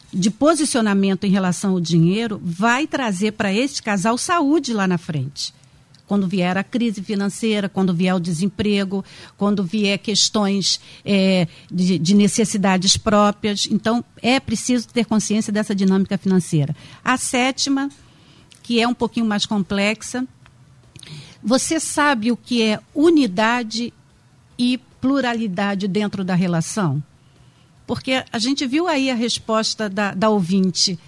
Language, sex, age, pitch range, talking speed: Portuguese, female, 50-69, 190-255 Hz, 130 wpm